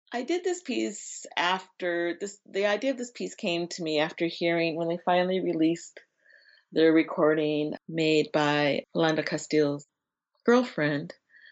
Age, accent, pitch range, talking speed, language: 40-59, American, 140-175 Hz, 140 wpm, English